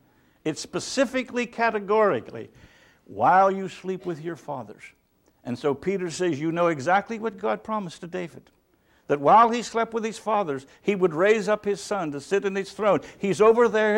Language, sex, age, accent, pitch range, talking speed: English, male, 60-79, American, 155-225 Hz, 180 wpm